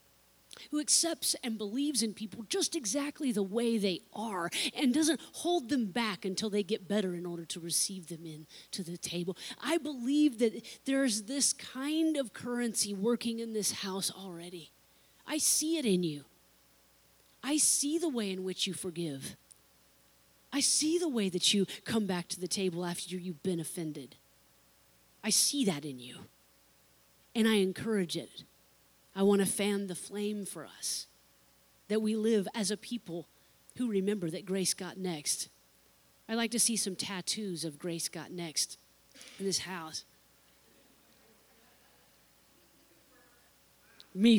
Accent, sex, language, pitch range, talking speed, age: American, female, English, 175-230 Hz, 155 wpm, 30-49